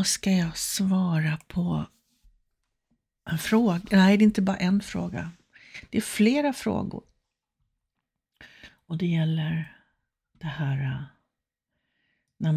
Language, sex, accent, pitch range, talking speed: Swedish, female, native, 160-195 Hz, 110 wpm